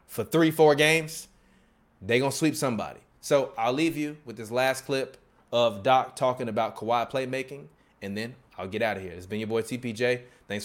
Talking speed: 195 wpm